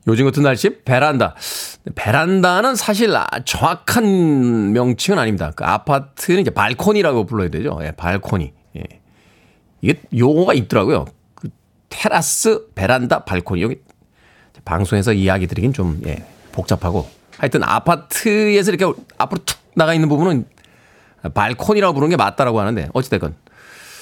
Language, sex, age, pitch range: Korean, male, 40-59, 100-150 Hz